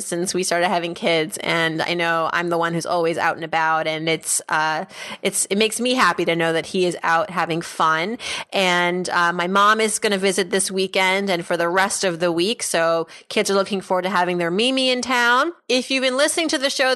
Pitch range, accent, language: 175-215 Hz, American, English